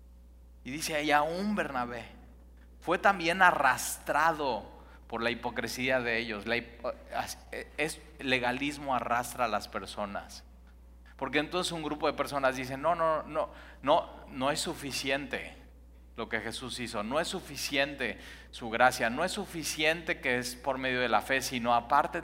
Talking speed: 150 wpm